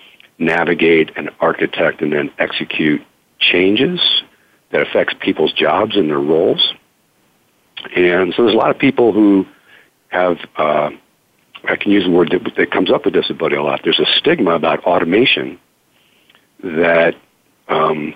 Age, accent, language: 50-69, American, English